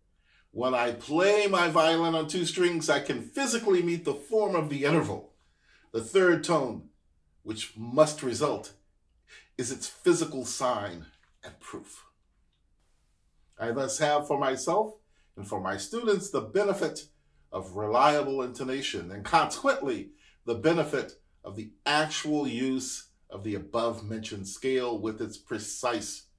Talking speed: 135 wpm